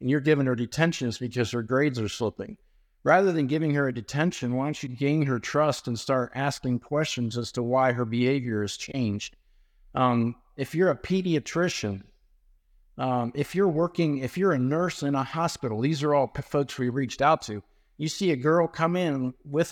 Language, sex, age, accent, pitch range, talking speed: English, male, 50-69, American, 120-155 Hz, 200 wpm